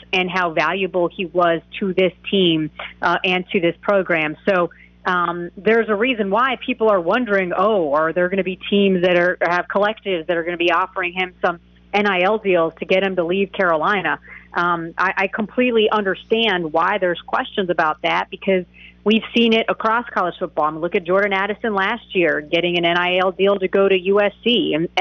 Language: English